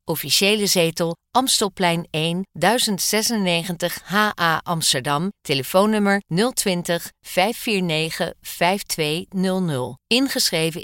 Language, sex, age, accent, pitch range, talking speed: Dutch, female, 40-59, Dutch, 165-205 Hz, 65 wpm